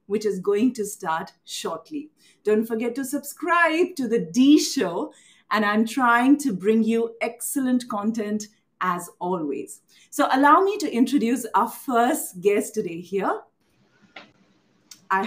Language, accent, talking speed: English, Indian, 140 wpm